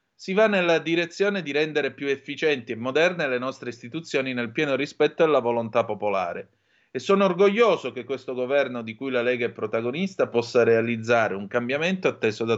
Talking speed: 175 wpm